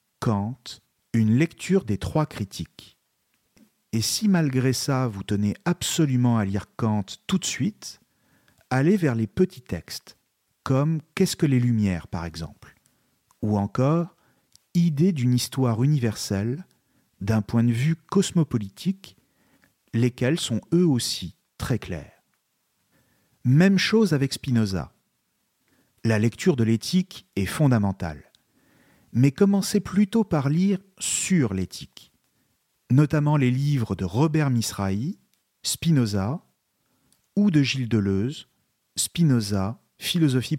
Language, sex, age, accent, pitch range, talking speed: French, male, 50-69, French, 110-165 Hz, 115 wpm